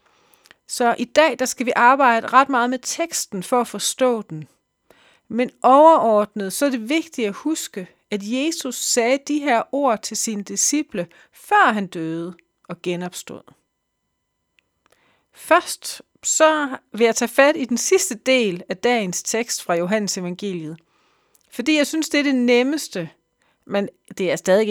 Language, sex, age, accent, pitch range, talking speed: Danish, female, 40-59, native, 200-275 Hz, 155 wpm